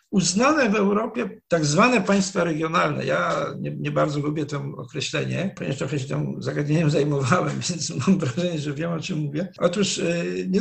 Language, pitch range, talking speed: Polish, 155-205 Hz, 170 wpm